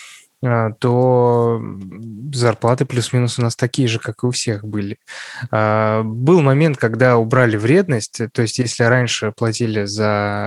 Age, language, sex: 20-39, Russian, male